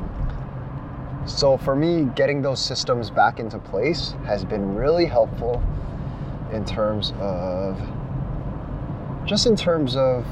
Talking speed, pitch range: 115 wpm, 115-140 Hz